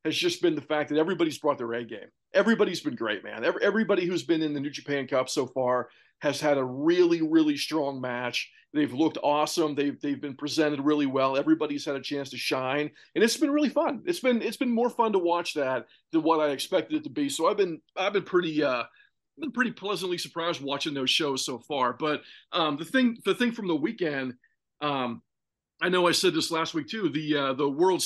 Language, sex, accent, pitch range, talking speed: English, male, American, 135-175 Hz, 230 wpm